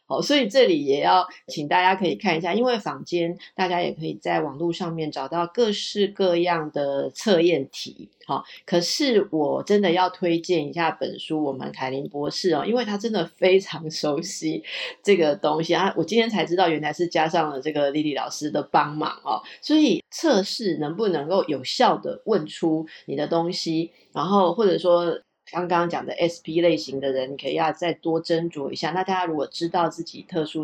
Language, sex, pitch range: Chinese, female, 155-205 Hz